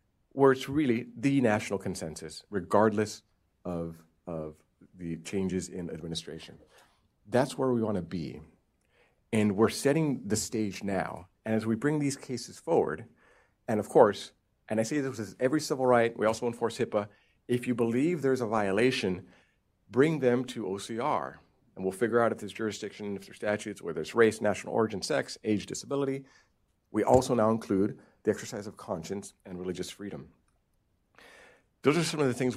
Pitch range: 95-120 Hz